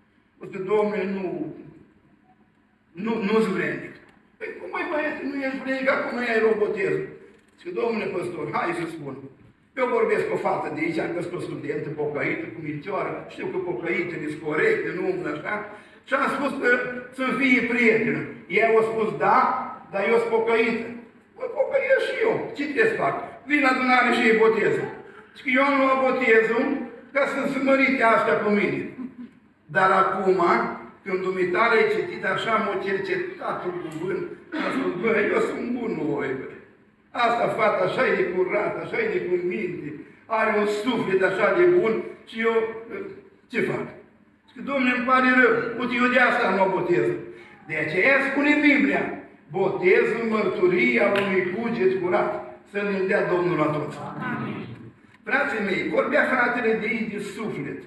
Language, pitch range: Romanian, 200-295 Hz